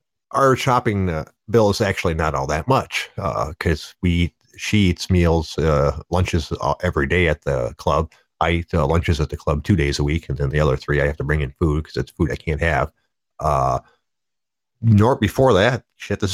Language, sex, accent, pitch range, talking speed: English, male, American, 75-90 Hz, 210 wpm